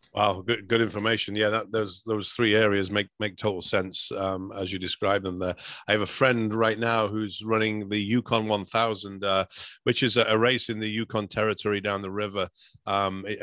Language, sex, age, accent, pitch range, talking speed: English, male, 40-59, British, 95-105 Hz, 205 wpm